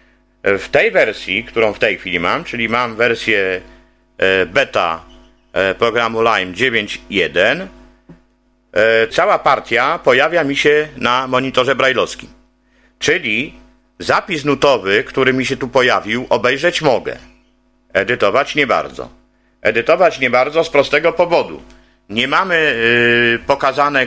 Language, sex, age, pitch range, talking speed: Polish, male, 50-69, 110-135 Hz, 110 wpm